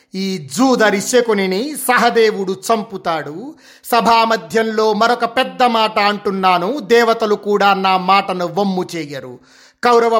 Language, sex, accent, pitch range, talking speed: Telugu, male, native, 185-235 Hz, 105 wpm